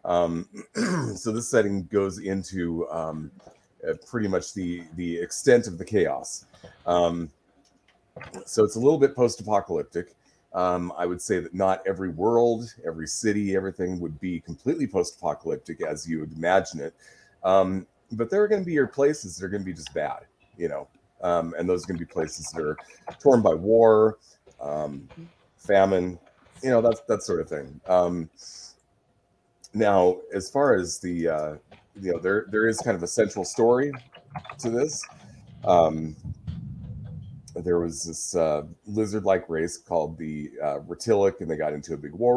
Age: 30-49